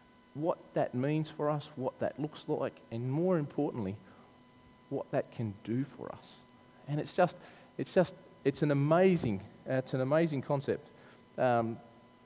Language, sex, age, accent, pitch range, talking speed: English, male, 30-49, Australian, 115-145 Hz, 150 wpm